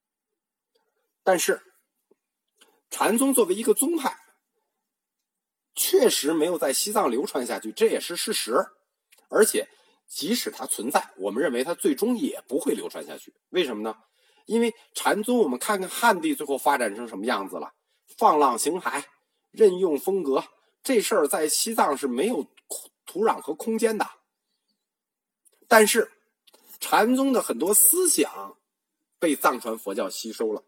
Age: 50-69